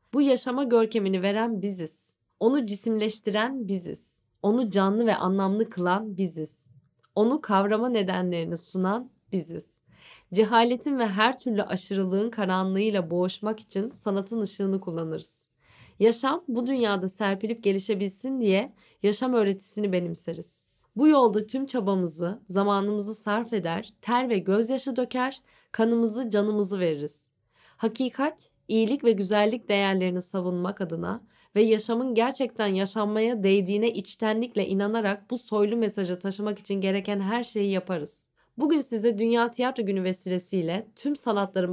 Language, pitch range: Turkish, 195-235 Hz